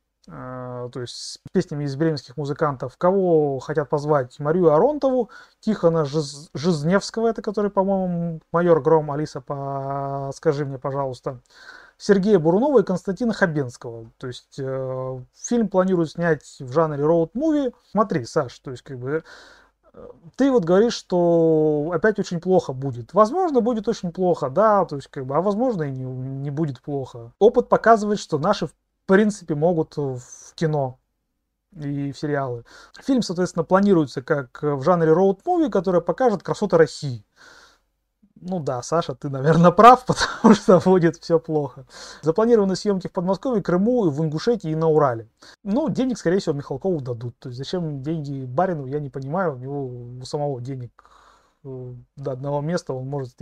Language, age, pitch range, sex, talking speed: Russian, 30-49, 140-190 Hz, male, 150 wpm